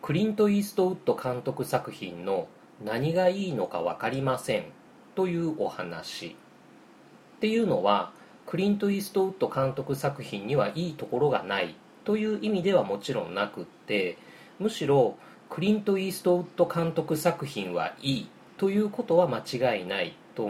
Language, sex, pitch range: Japanese, male, 130-195 Hz